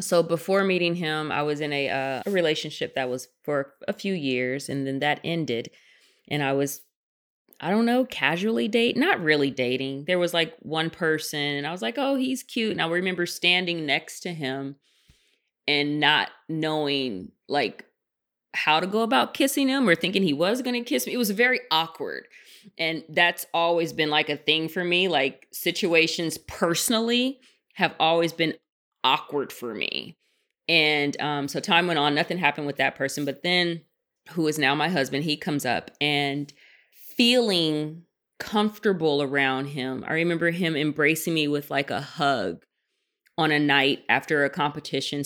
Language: English